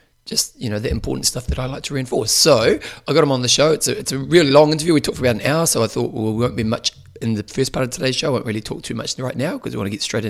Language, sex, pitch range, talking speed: English, male, 110-140 Hz, 350 wpm